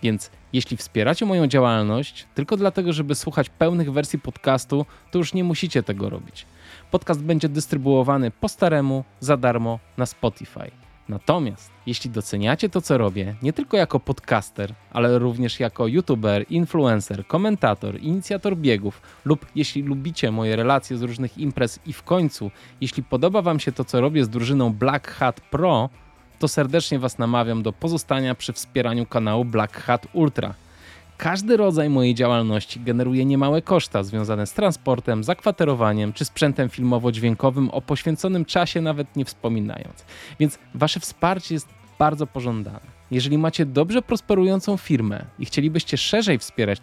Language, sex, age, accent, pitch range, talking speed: Polish, male, 20-39, native, 115-155 Hz, 145 wpm